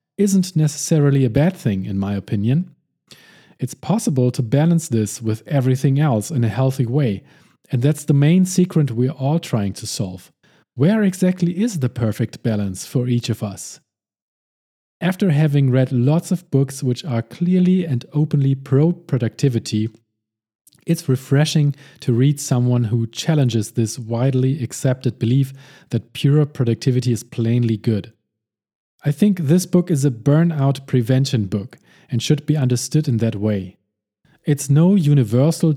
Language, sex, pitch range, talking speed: English, male, 120-150 Hz, 150 wpm